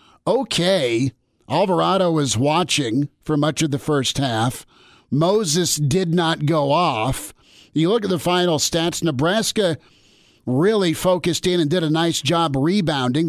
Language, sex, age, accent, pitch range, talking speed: English, male, 50-69, American, 135-165 Hz, 140 wpm